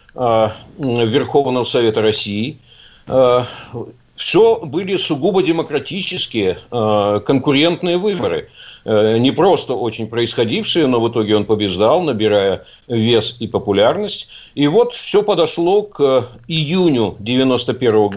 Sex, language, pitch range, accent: male, Russian, 120-165 Hz, native